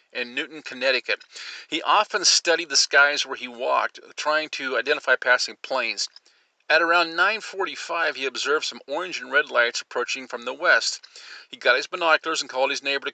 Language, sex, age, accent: English, male, 40-59, American